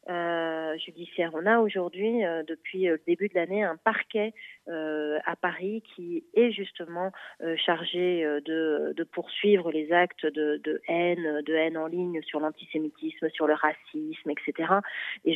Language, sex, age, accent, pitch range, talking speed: Italian, female, 30-49, French, 160-200 Hz, 150 wpm